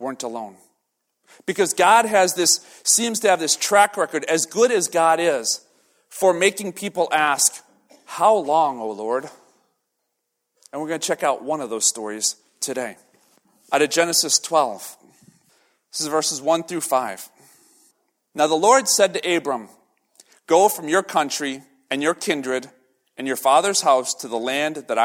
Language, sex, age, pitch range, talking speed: English, male, 40-59, 130-170 Hz, 160 wpm